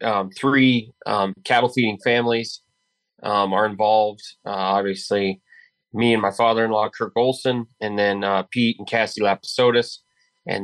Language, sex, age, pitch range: English, male, 30-49, 100-115 Hz